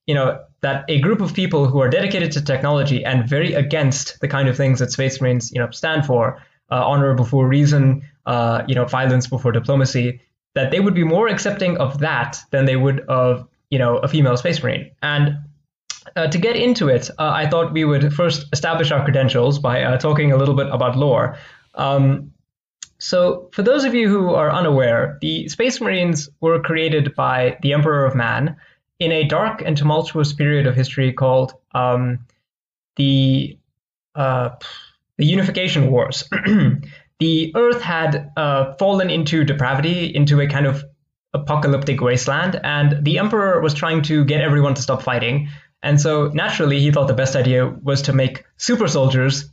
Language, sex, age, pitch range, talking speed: English, male, 20-39, 130-160 Hz, 180 wpm